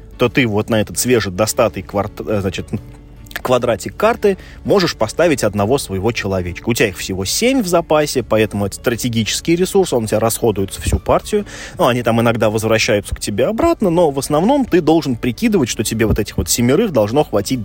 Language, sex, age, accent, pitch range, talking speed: Russian, male, 20-39, native, 100-125 Hz, 185 wpm